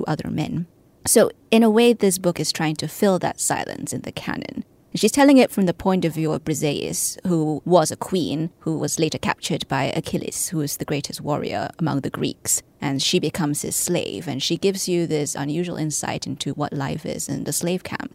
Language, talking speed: English, 215 wpm